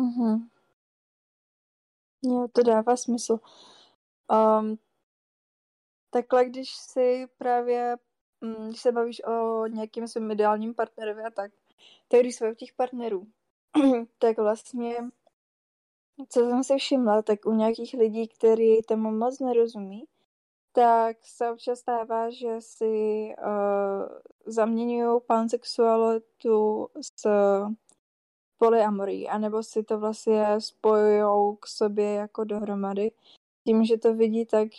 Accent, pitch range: native, 210-235 Hz